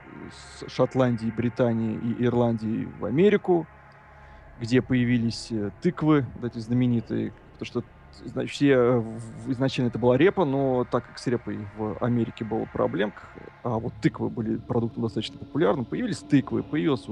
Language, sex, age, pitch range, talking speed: Russian, male, 20-39, 115-135 Hz, 140 wpm